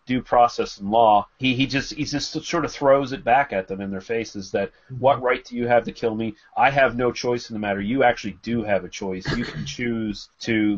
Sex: male